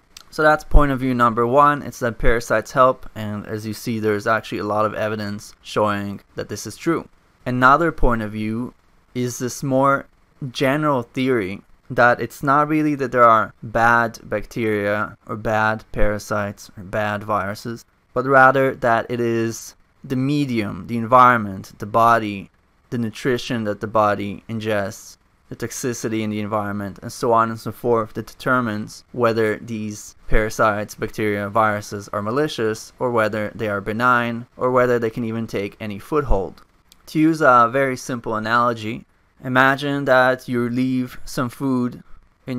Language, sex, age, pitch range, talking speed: English, male, 20-39, 105-125 Hz, 160 wpm